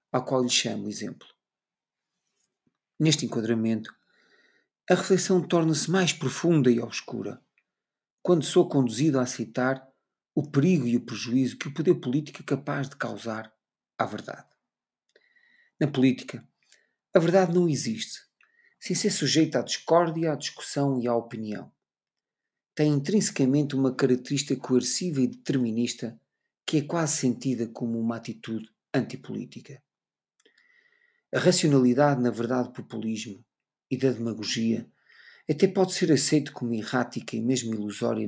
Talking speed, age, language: 130 wpm, 50-69, Portuguese